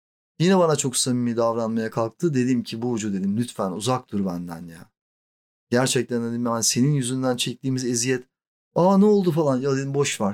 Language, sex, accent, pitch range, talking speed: Turkish, male, native, 115-155 Hz, 185 wpm